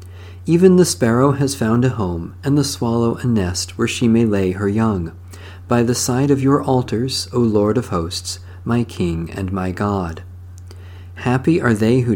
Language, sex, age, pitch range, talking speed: English, male, 50-69, 90-130 Hz, 185 wpm